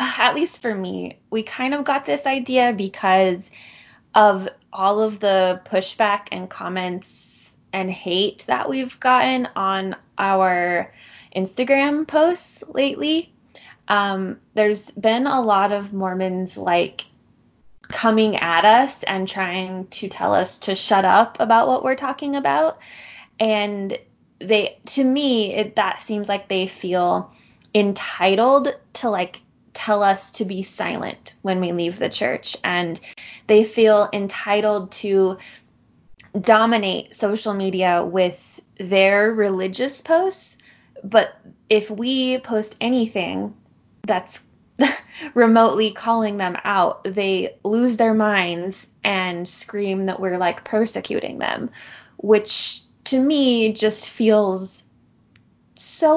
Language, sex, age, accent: English, female, 20-39, American